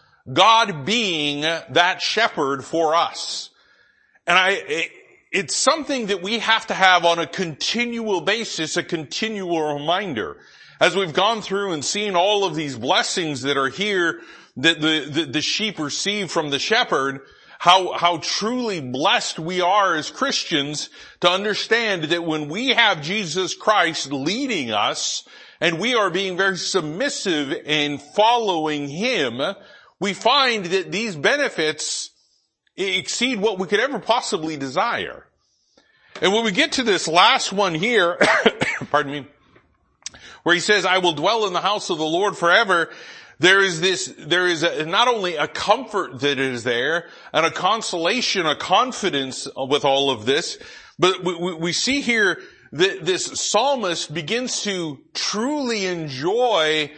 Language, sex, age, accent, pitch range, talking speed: English, male, 40-59, American, 155-210 Hz, 150 wpm